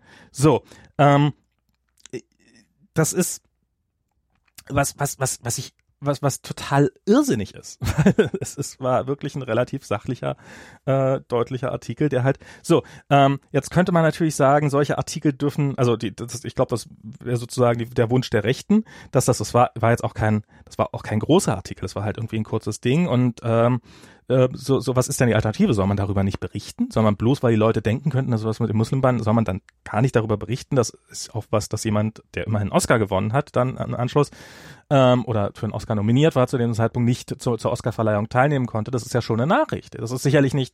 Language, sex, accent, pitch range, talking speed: German, male, German, 110-140 Hz, 215 wpm